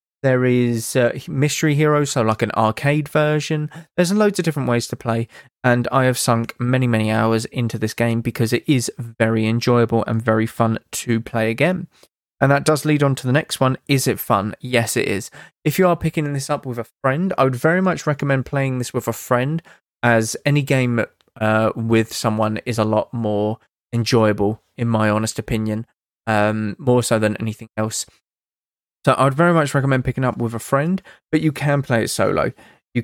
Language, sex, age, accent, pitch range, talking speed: English, male, 20-39, British, 115-145 Hz, 200 wpm